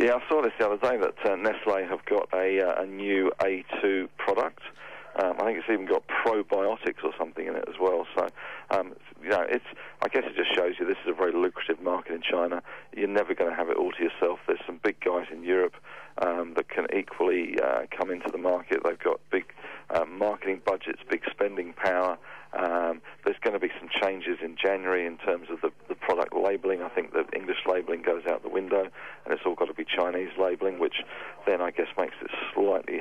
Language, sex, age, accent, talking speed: English, male, 40-59, British, 225 wpm